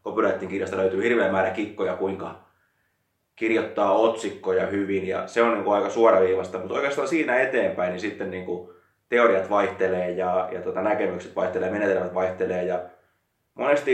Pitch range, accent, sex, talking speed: 95-105 Hz, native, male, 155 wpm